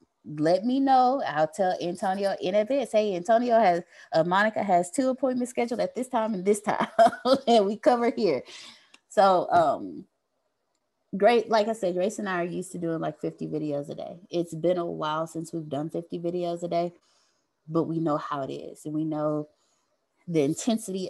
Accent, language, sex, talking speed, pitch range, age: American, English, female, 190 wpm, 160-220 Hz, 20-39